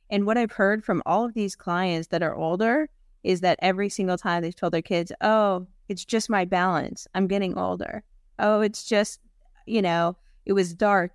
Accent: American